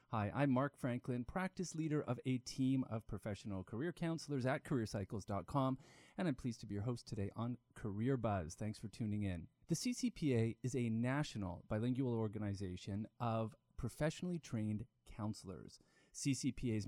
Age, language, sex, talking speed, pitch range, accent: 30-49, English, male, 150 wpm, 105-135 Hz, American